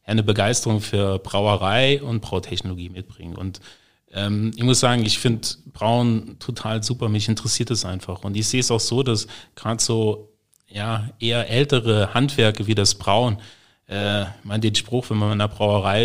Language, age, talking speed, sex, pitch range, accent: German, 30-49, 170 wpm, male, 100-115 Hz, German